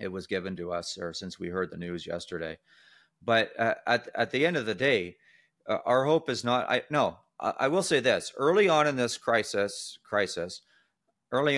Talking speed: 205 wpm